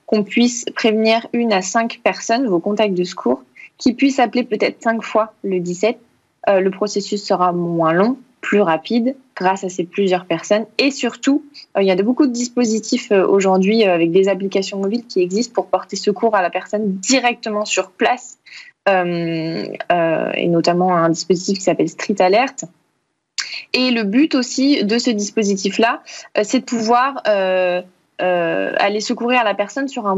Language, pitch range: French, 185-230 Hz